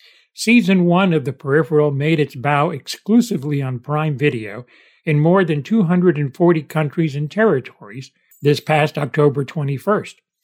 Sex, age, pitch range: male, 60-79, 140-180 Hz